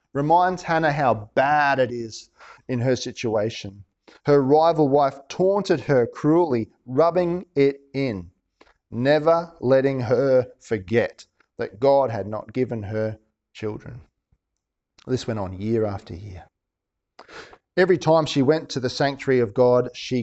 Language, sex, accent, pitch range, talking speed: English, male, Australian, 120-165 Hz, 135 wpm